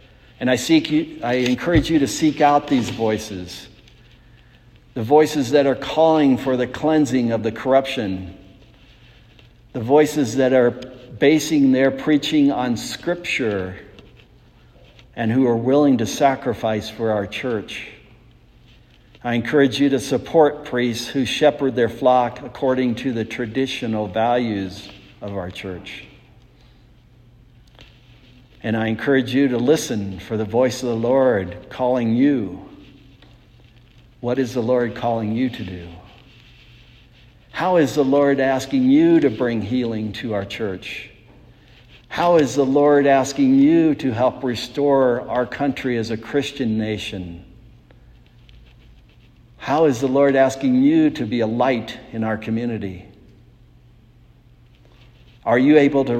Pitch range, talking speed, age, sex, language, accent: 115-135 Hz, 135 wpm, 60-79, male, English, American